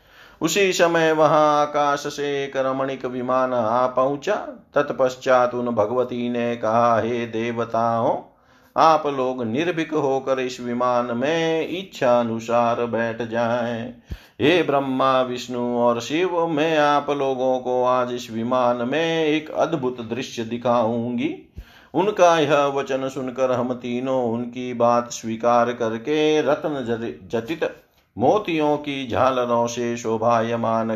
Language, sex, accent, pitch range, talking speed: Hindi, male, native, 115-140 Hz, 120 wpm